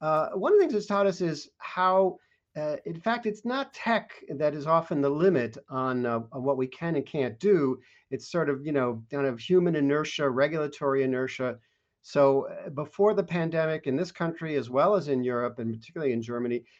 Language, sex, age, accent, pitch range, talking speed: English, male, 50-69, American, 130-170 Hz, 205 wpm